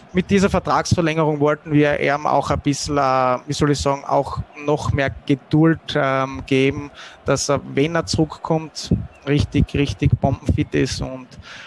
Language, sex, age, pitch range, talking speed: German, male, 20-39, 130-150 Hz, 150 wpm